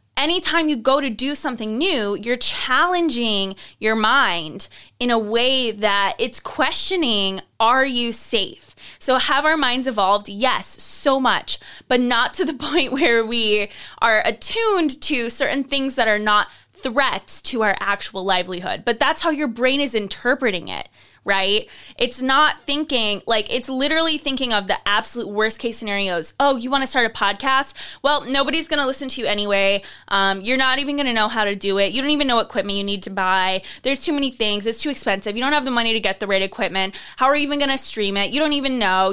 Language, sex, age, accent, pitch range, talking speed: English, female, 20-39, American, 205-280 Hz, 205 wpm